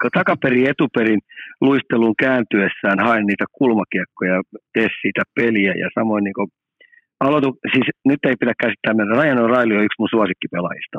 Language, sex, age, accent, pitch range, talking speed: Finnish, male, 50-69, native, 105-125 Hz, 130 wpm